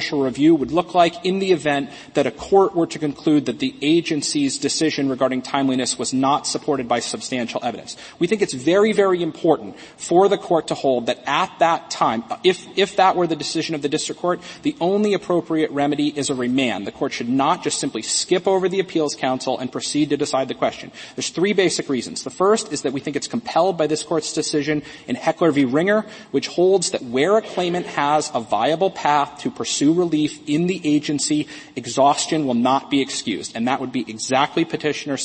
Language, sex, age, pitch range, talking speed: English, male, 30-49, 140-180 Hz, 205 wpm